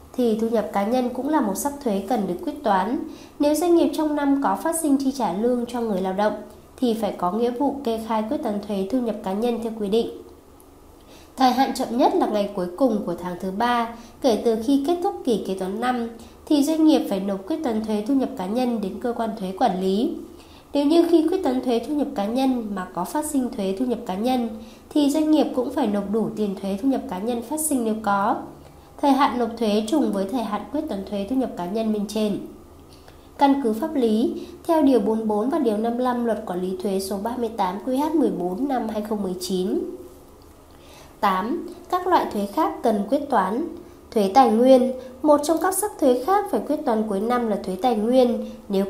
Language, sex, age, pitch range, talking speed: Vietnamese, female, 20-39, 210-280 Hz, 225 wpm